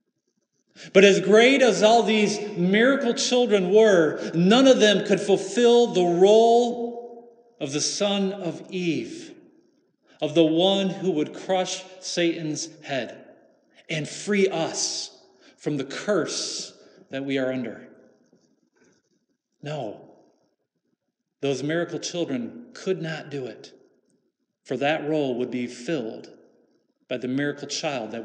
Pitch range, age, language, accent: 150-200 Hz, 40-59, English, American